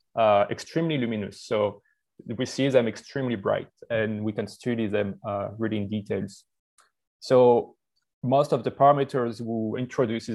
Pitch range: 110-135 Hz